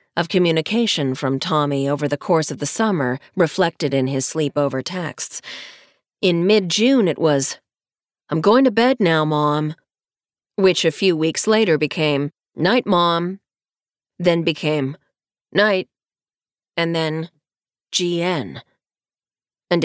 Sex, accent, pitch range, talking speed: female, American, 145-185 Hz, 120 wpm